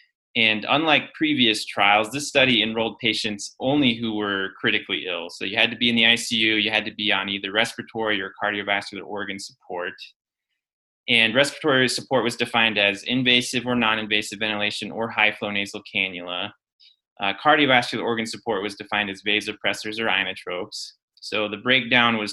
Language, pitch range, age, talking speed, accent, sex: English, 105-120 Hz, 20-39, 165 wpm, American, male